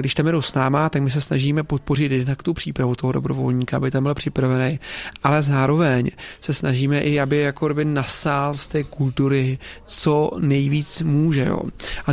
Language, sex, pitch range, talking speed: Czech, male, 140-155 Hz, 180 wpm